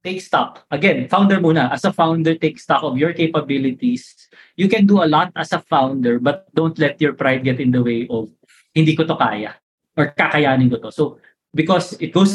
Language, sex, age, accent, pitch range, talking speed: Filipino, male, 20-39, native, 130-170 Hz, 210 wpm